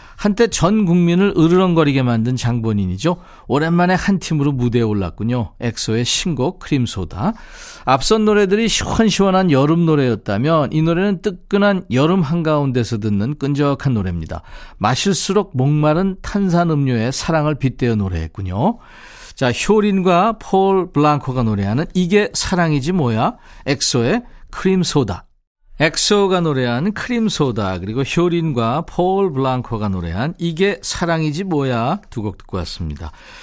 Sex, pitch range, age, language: male, 125-185 Hz, 40-59, Korean